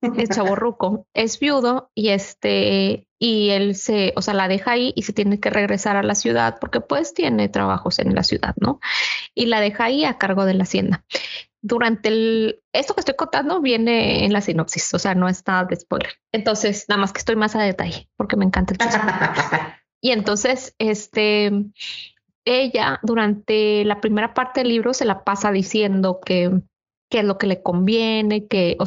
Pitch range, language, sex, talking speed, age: 180-230 Hz, Spanish, female, 190 wpm, 20-39